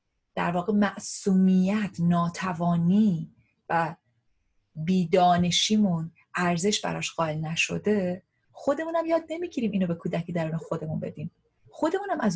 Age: 30-49